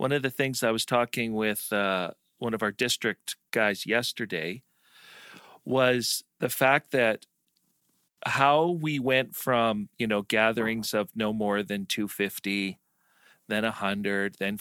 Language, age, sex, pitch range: English, 40-59, male, 105-135 Hz